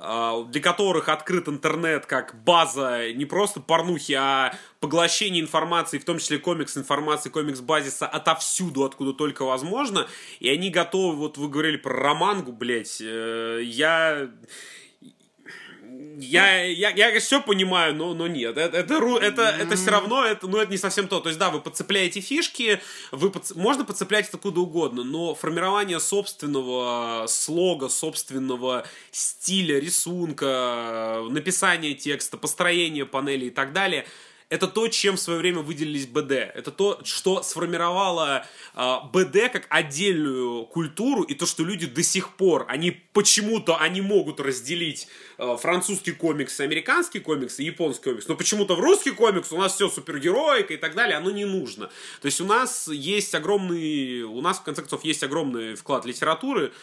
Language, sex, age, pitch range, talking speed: Russian, male, 20-39, 140-190 Hz, 155 wpm